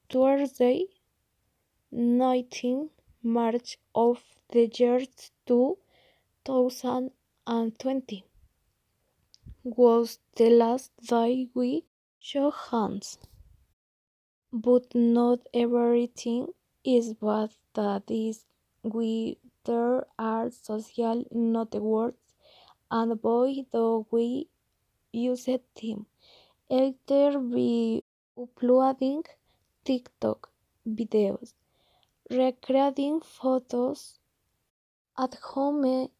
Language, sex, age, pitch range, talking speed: English, female, 20-39, 230-255 Hz, 70 wpm